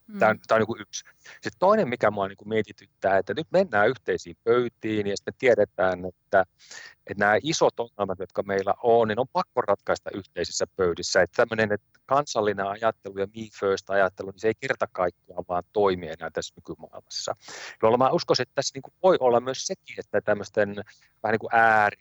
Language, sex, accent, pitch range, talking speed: Finnish, male, native, 95-125 Hz, 165 wpm